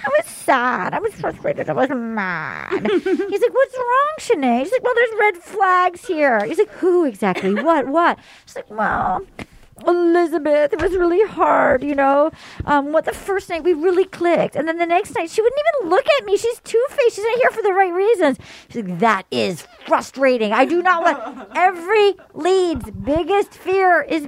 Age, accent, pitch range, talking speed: 40-59, American, 225-340 Hz, 195 wpm